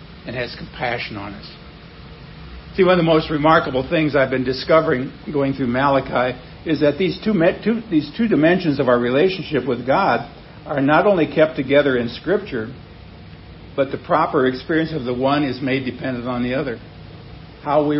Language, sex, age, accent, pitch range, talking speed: English, male, 60-79, American, 125-155 Hz, 175 wpm